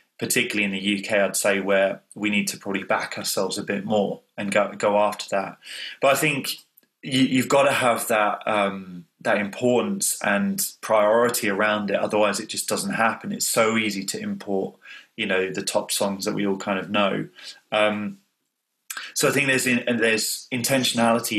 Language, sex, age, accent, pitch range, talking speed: English, male, 30-49, British, 100-120 Hz, 185 wpm